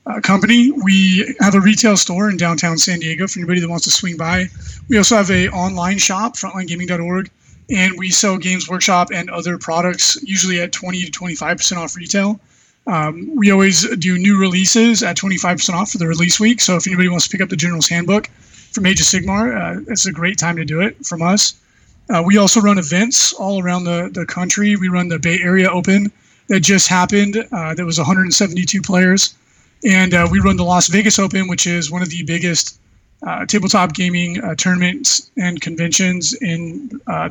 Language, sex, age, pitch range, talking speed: English, male, 20-39, 175-200 Hz, 205 wpm